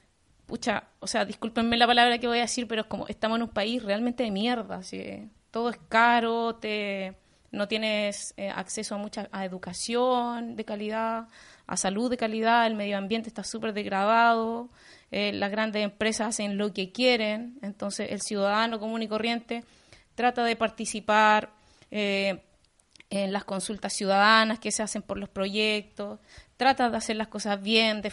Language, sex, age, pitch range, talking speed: Spanish, female, 20-39, 200-230 Hz, 170 wpm